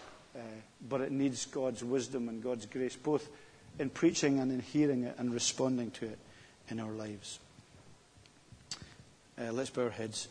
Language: English